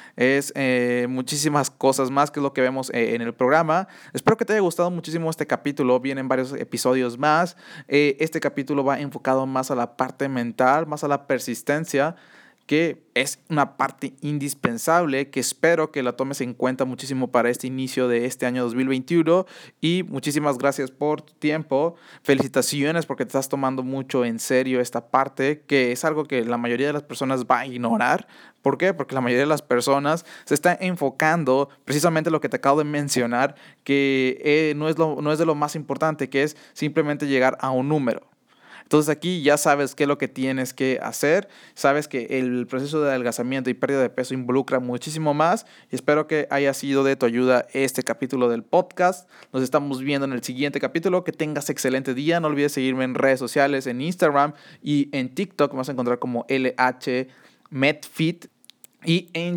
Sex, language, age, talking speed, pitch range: male, Spanish, 30-49, 190 wpm, 130-155 Hz